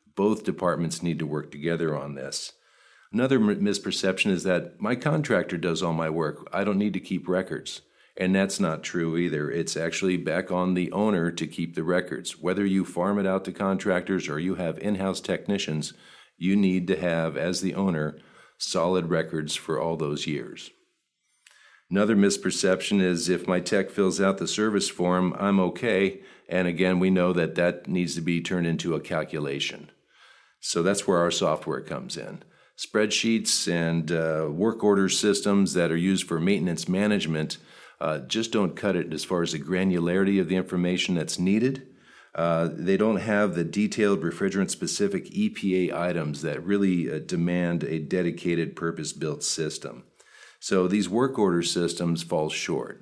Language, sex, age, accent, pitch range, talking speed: English, male, 50-69, American, 85-100 Hz, 165 wpm